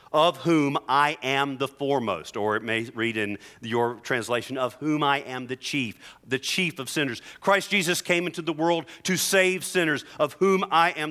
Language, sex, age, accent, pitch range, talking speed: English, male, 40-59, American, 115-175 Hz, 195 wpm